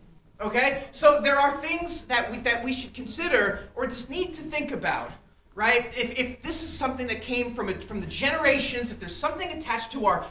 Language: English